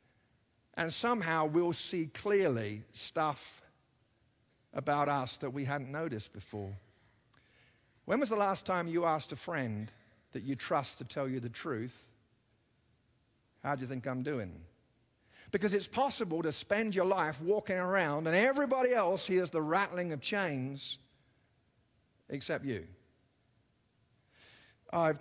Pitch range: 125-170 Hz